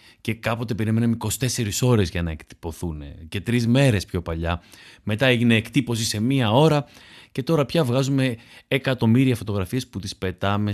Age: 30-49